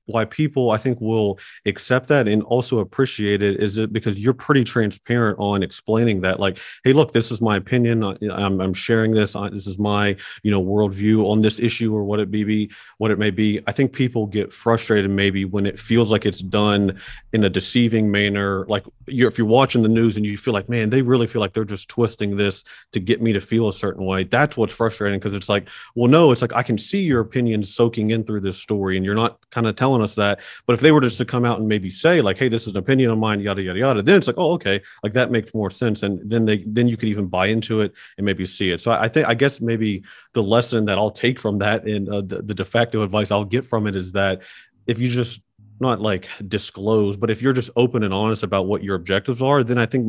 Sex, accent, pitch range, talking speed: male, American, 100-115 Hz, 260 wpm